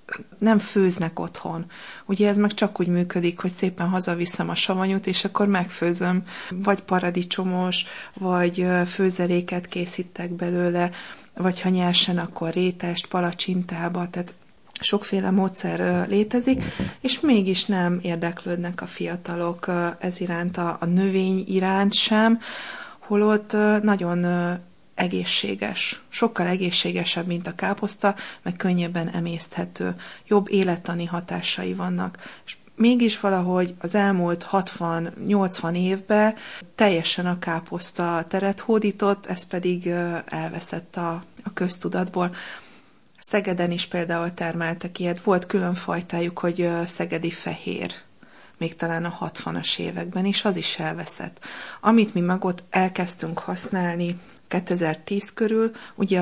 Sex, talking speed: female, 115 wpm